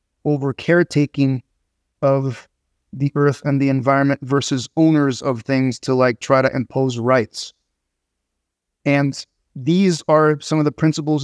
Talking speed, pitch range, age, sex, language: 135 wpm, 130-150 Hz, 30-49, male, English